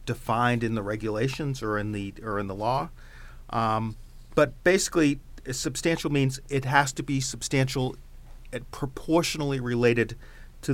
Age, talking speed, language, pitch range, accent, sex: 40-59, 140 wpm, English, 105-130 Hz, American, male